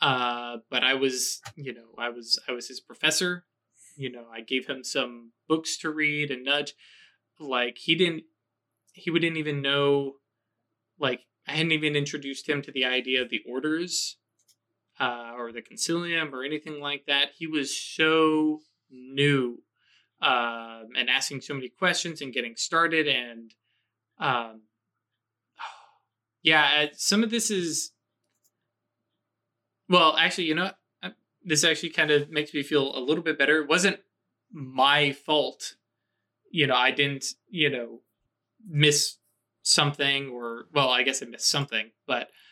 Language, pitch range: English, 120-160 Hz